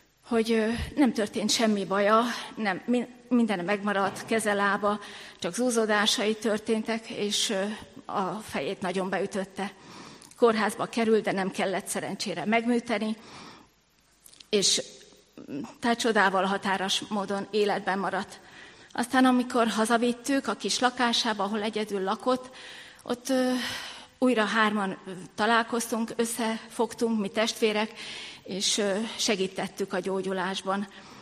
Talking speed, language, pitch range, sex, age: 95 wpm, Hungarian, 200-235 Hz, female, 30-49